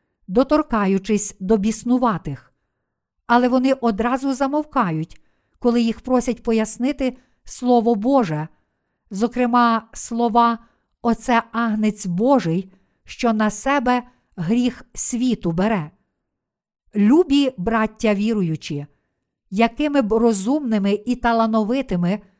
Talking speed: 85 wpm